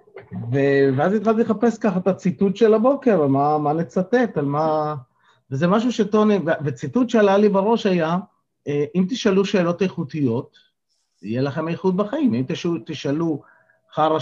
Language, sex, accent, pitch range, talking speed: Hebrew, male, native, 135-205 Hz, 135 wpm